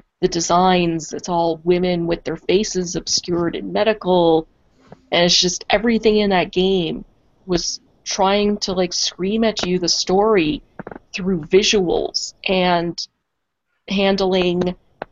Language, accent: English, American